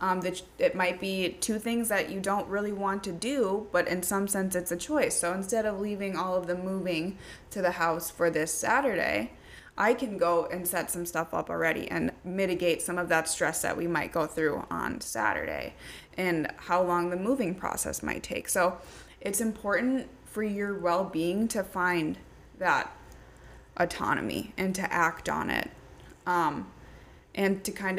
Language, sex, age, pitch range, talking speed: English, female, 20-39, 175-200 Hz, 180 wpm